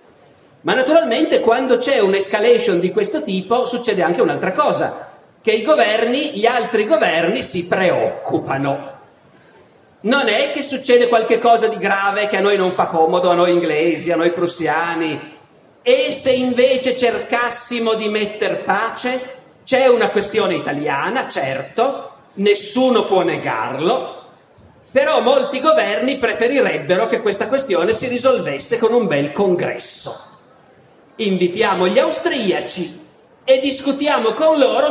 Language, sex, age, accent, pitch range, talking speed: Italian, male, 40-59, native, 195-260 Hz, 125 wpm